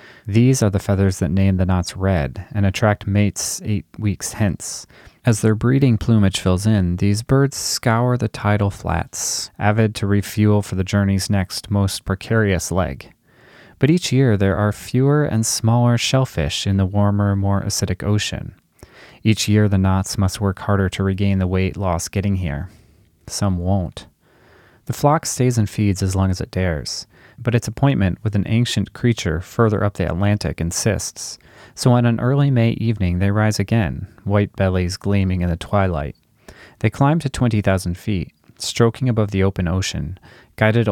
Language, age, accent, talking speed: English, 30-49, American, 170 wpm